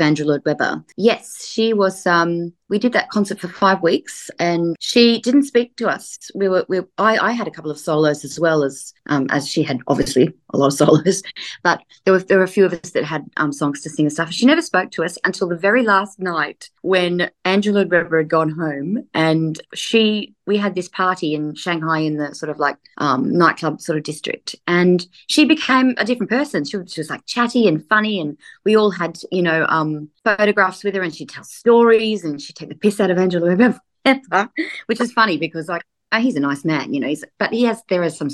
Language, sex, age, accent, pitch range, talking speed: English, female, 30-49, Australian, 155-210 Hz, 230 wpm